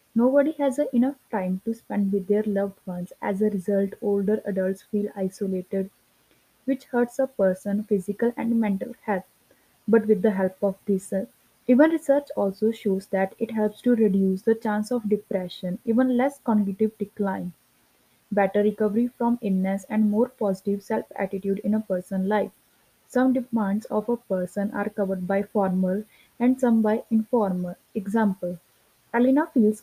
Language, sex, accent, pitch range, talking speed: English, female, Indian, 195-225 Hz, 155 wpm